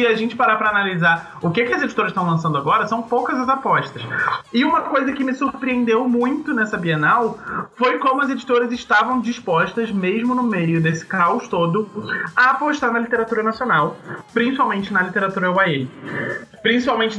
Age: 20-39